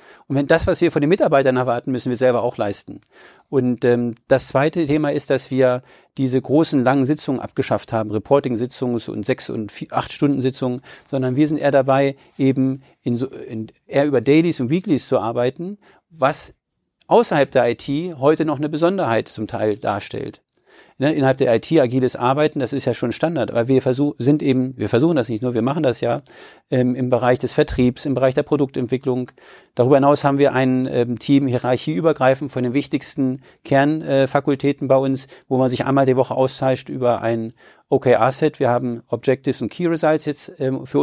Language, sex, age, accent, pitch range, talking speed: German, male, 40-59, German, 125-150 Hz, 190 wpm